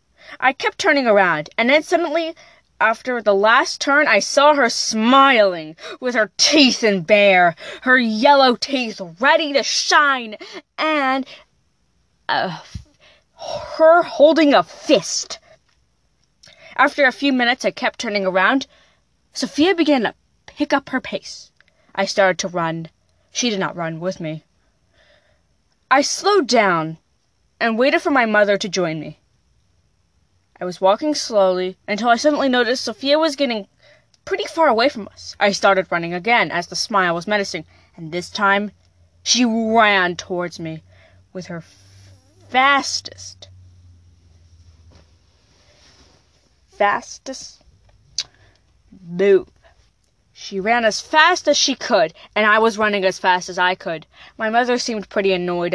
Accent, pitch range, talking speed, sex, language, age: American, 175-270 Hz, 135 wpm, female, English, 20-39